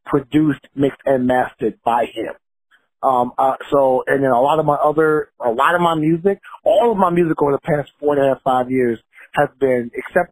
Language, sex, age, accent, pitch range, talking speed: English, male, 30-49, American, 120-150 Hz, 215 wpm